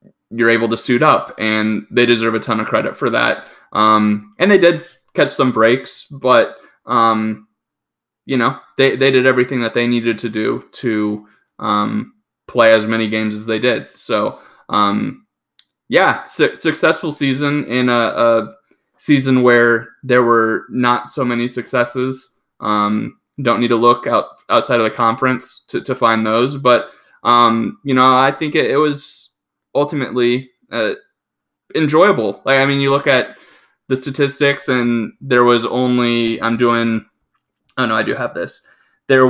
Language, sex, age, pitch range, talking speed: English, male, 20-39, 115-130 Hz, 165 wpm